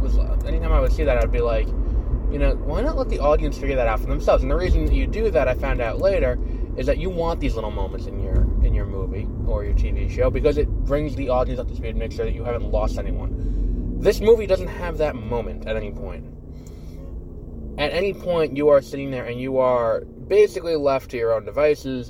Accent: American